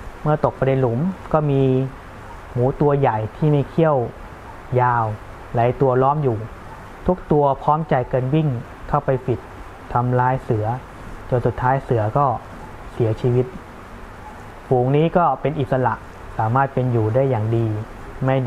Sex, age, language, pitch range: male, 20-39, Thai, 110-135 Hz